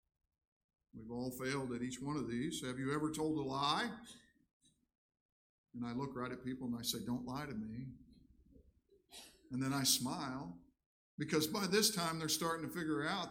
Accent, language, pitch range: American, English, 140-215 Hz